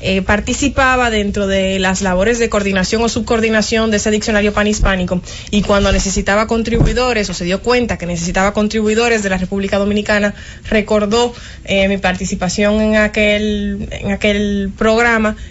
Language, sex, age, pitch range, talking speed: English, female, 20-39, 195-225 Hz, 145 wpm